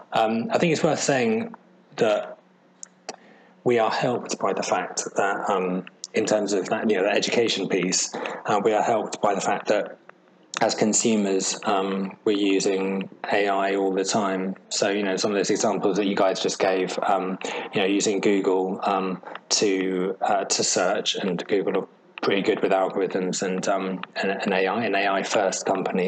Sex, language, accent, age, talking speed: male, English, British, 20-39, 175 wpm